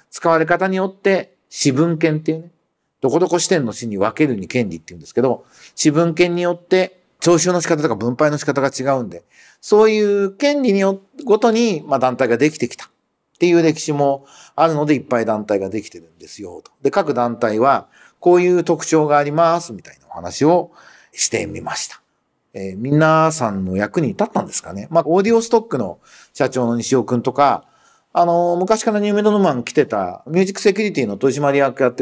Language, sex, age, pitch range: Japanese, male, 50-69, 125-185 Hz